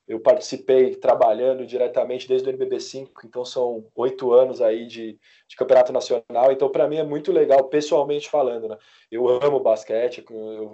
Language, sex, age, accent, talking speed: Portuguese, male, 20-39, Brazilian, 160 wpm